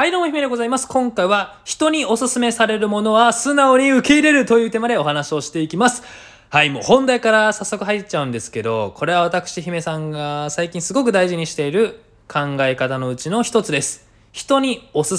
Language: Japanese